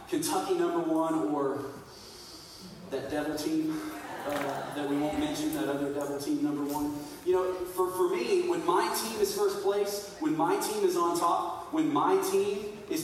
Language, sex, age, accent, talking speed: English, male, 30-49, American, 180 wpm